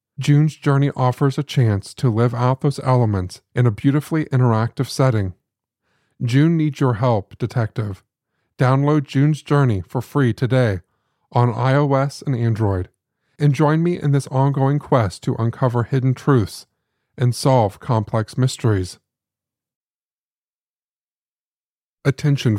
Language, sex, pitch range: English, male, 110-140 Hz